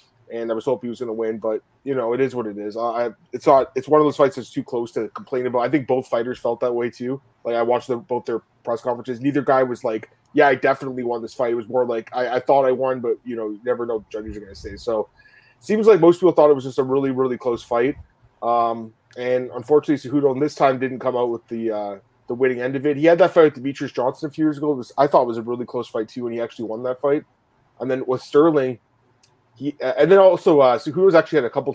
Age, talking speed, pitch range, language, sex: 20-39, 290 wpm, 120-140 Hz, English, male